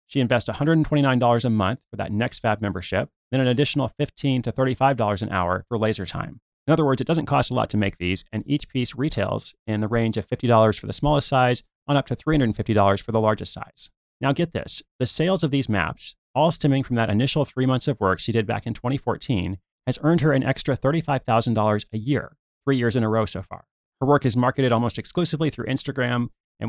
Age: 30-49